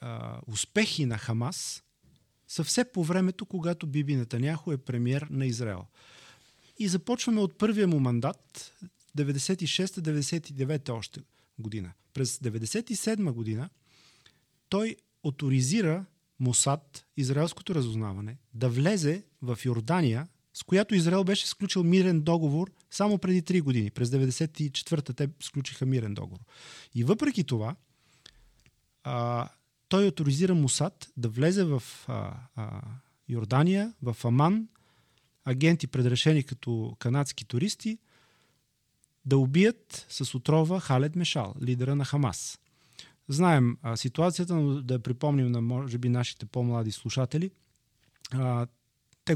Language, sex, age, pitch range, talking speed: Bulgarian, male, 30-49, 120-165 Hz, 115 wpm